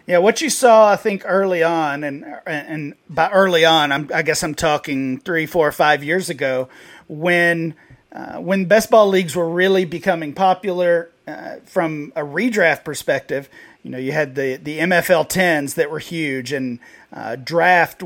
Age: 40-59